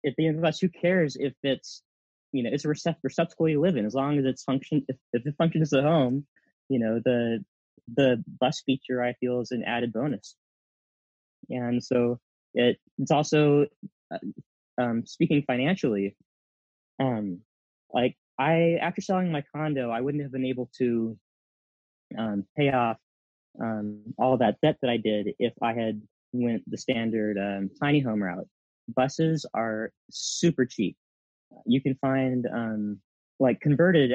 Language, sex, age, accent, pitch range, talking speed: English, male, 20-39, American, 110-135 Hz, 165 wpm